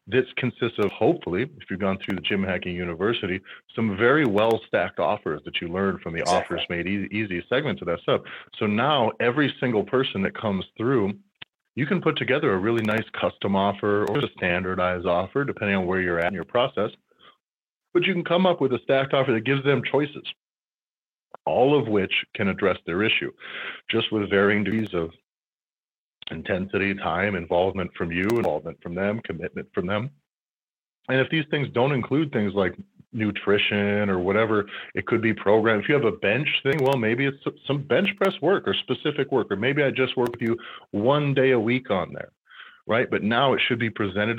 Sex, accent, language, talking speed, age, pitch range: male, American, English, 195 wpm, 30-49, 100-135 Hz